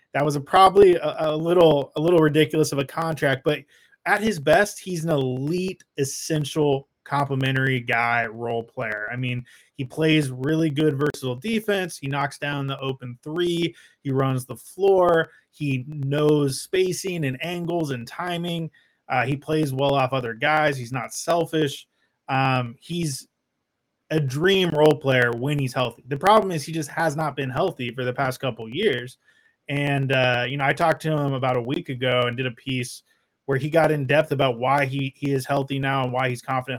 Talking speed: 190 wpm